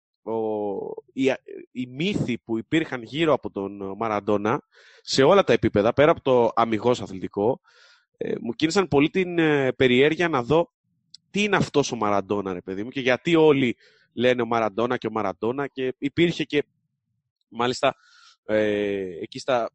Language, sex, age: Greek, male, 20-39